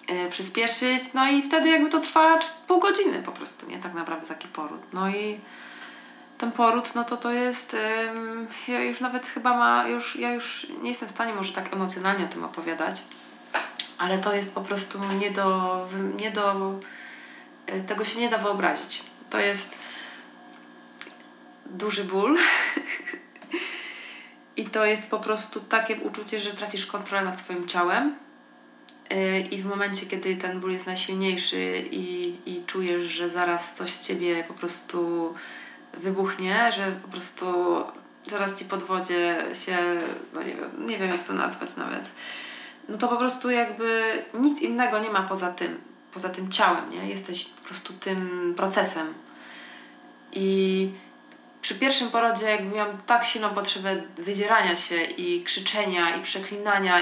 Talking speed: 150 wpm